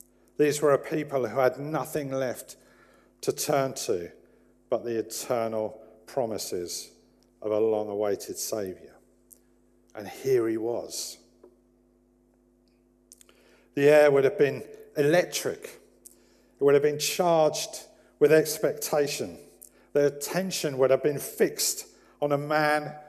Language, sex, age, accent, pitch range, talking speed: English, male, 50-69, British, 120-170 Hz, 120 wpm